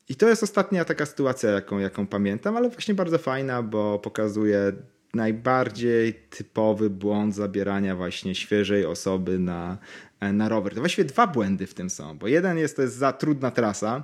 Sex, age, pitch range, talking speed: male, 30-49, 105-140 Hz, 170 wpm